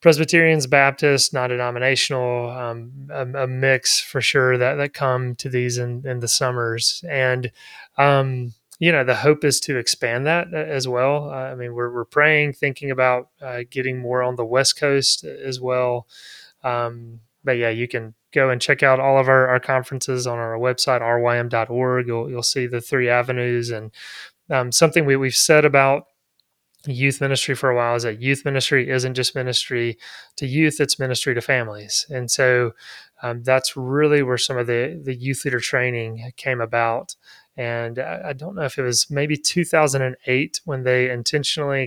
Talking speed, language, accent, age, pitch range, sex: 180 wpm, English, American, 30-49, 120-140 Hz, male